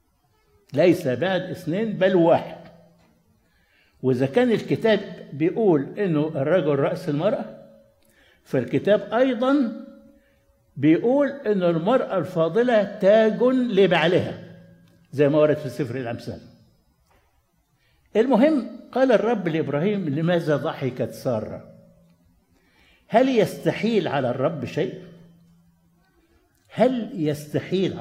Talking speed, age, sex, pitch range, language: 90 wpm, 60-79, male, 130-195 Hz, Arabic